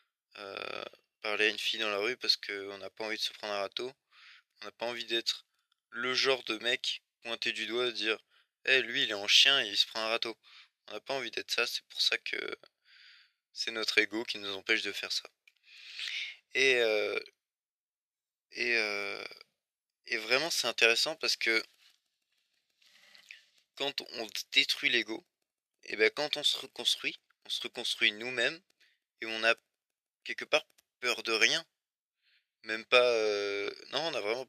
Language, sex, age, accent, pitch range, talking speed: French, male, 20-39, French, 105-125 Hz, 180 wpm